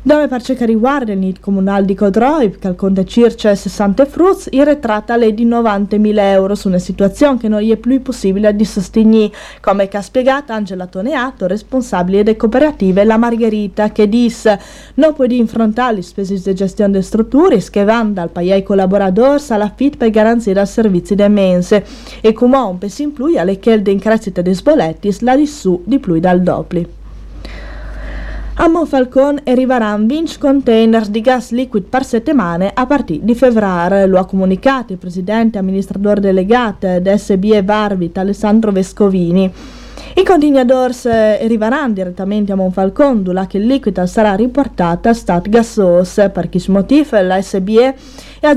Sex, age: female, 40-59